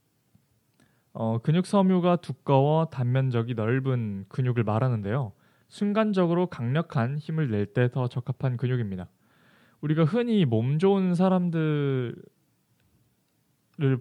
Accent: native